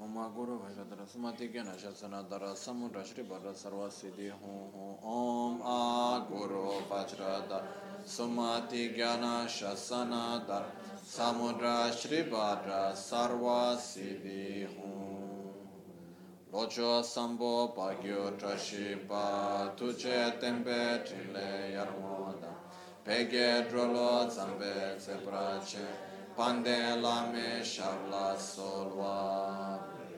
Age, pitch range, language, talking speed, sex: 20-39, 100-120 Hz, Italian, 70 wpm, male